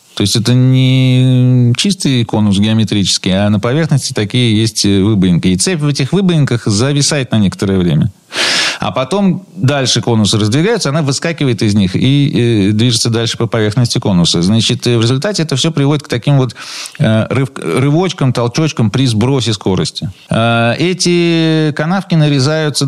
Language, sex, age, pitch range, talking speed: Russian, male, 40-59, 110-150 Hz, 140 wpm